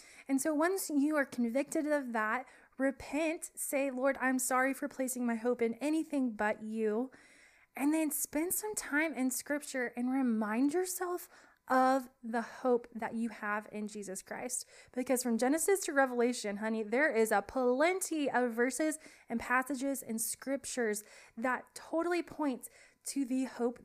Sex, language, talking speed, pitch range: female, English, 155 wpm, 225-275 Hz